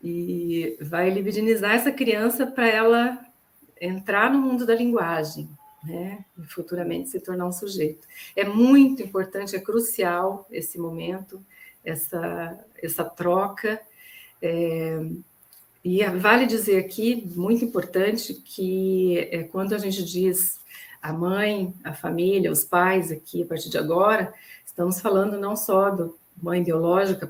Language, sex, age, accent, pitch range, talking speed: Portuguese, female, 50-69, Brazilian, 175-225 Hz, 130 wpm